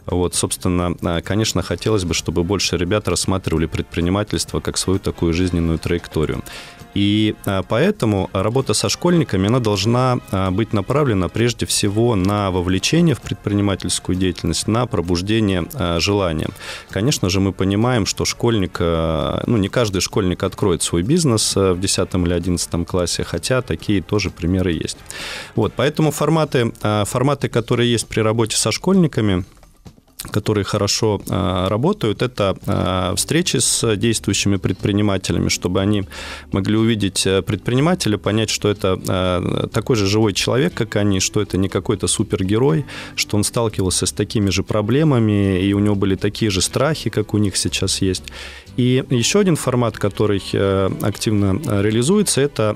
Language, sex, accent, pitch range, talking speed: Russian, male, native, 90-115 Hz, 140 wpm